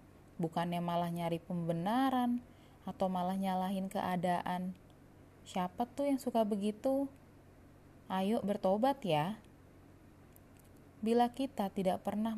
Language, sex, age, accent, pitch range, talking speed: Indonesian, female, 20-39, native, 175-220 Hz, 95 wpm